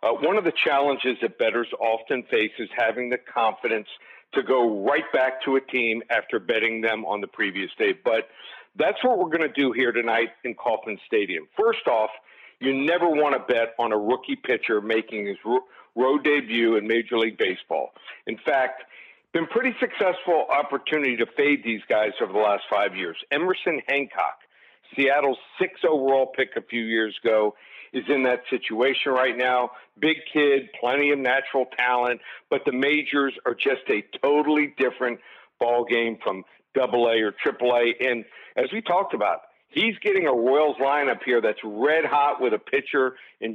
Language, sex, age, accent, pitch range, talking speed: English, male, 50-69, American, 120-150 Hz, 180 wpm